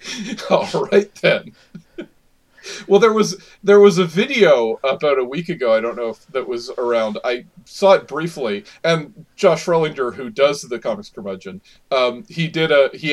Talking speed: 175 wpm